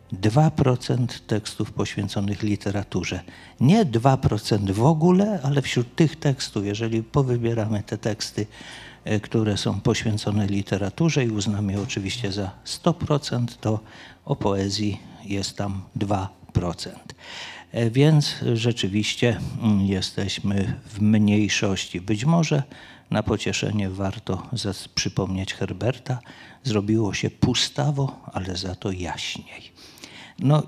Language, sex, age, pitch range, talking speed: Polish, male, 50-69, 100-130 Hz, 100 wpm